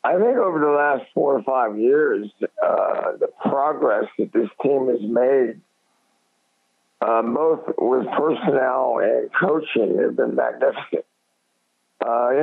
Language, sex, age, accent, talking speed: English, male, 50-69, American, 135 wpm